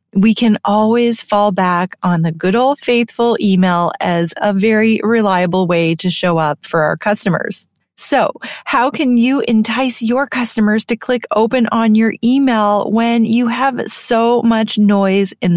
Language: English